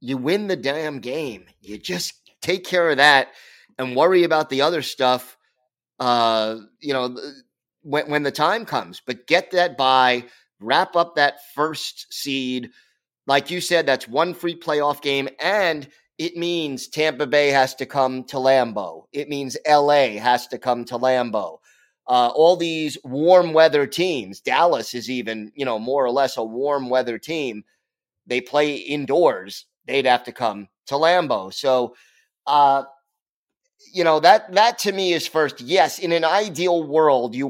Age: 30-49